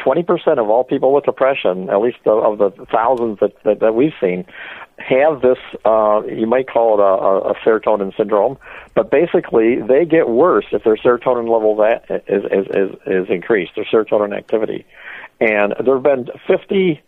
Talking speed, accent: 175 wpm, American